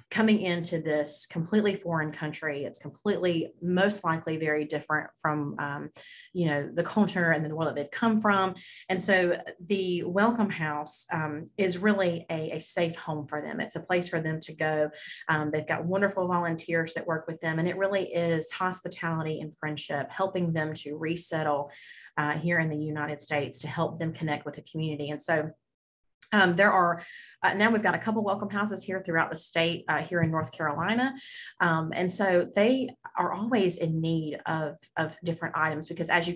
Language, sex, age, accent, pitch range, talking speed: English, female, 30-49, American, 155-185 Hz, 190 wpm